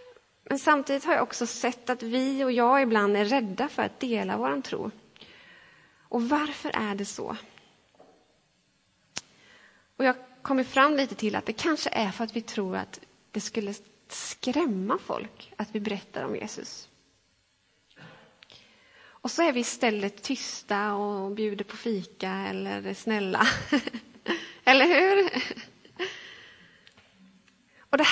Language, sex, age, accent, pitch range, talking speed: Swedish, female, 30-49, native, 215-270 Hz, 135 wpm